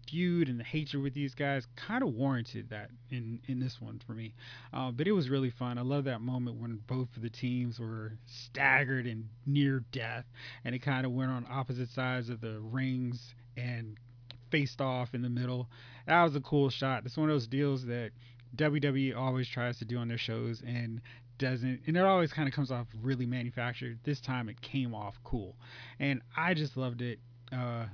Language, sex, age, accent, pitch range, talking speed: English, male, 20-39, American, 120-140 Hz, 205 wpm